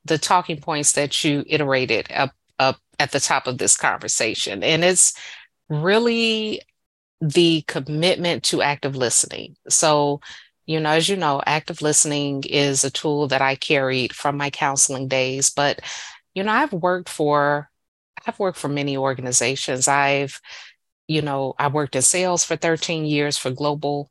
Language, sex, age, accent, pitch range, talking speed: English, female, 30-49, American, 135-155 Hz, 155 wpm